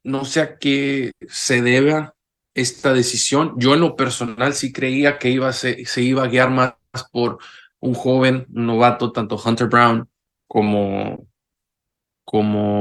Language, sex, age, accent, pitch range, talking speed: English, male, 20-39, Mexican, 115-140 Hz, 155 wpm